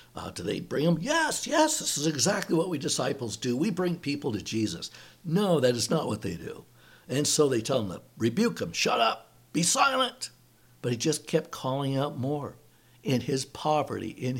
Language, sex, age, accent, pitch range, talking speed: English, male, 60-79, American, 110-145 Hz, 205 wpm